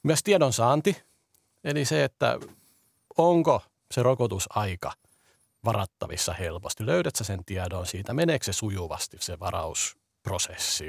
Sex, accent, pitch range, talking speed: male, native, 95-125 Hz, 105 wpm